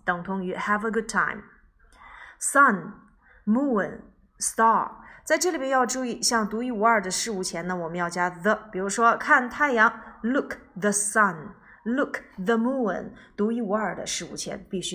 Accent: native